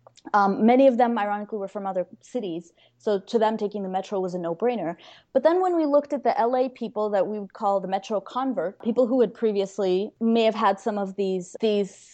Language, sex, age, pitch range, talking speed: English, female, 20-39, 200-245 Hz, 230 wpm